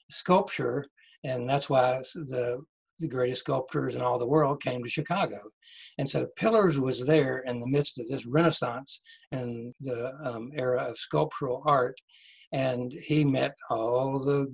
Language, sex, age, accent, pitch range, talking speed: English, male, 60-79, American, 125-155 Hz, 155 wpm